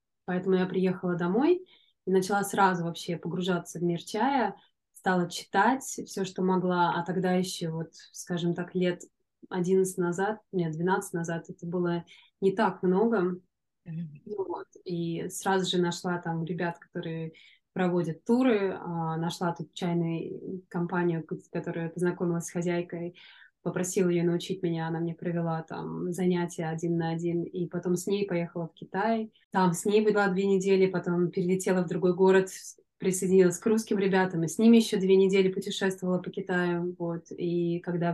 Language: Russian